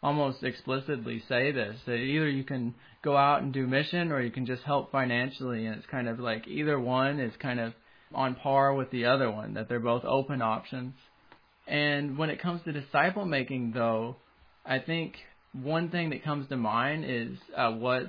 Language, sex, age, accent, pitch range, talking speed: English, male, 20-39, American, 125-150 Hz, 195 wpm